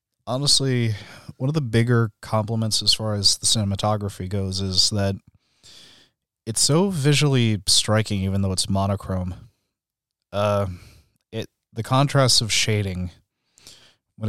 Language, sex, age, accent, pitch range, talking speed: English, male, 30-49, American, 100-115 Hz, 120 wpm